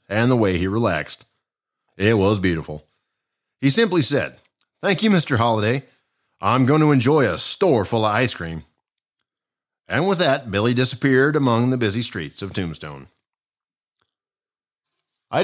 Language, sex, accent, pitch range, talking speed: English, male, American, 100-140 Hz, 145 wpm